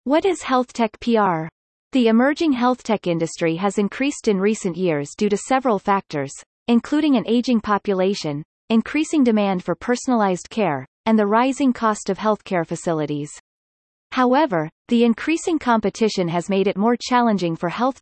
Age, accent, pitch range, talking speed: 30-49, American, 180-245 Hz, 155 wpm